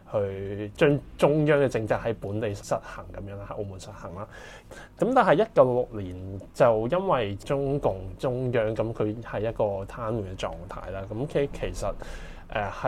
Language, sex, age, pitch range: Chinese, male, 20-39, 100-135 Hz